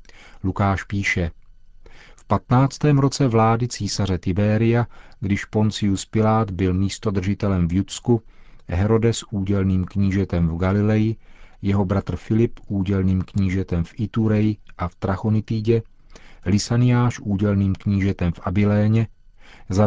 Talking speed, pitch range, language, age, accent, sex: 110 wpm, 95-115 Hz, Czech, 40-59, native, male